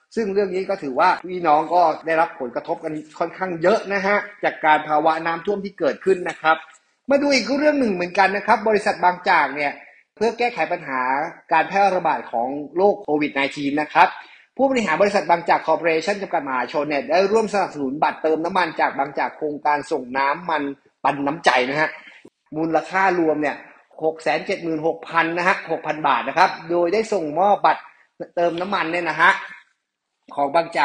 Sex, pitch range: male, 155-200 Hz